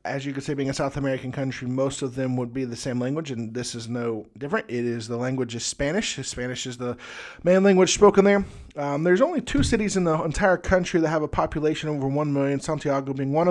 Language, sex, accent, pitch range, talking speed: English, male, American, 125-165 Hz, 240 wpm